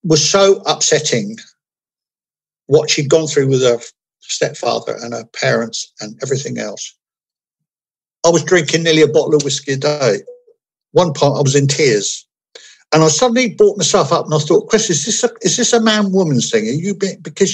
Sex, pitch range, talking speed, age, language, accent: male, 145-210 Hz, 175 wpm, 60-79, English, British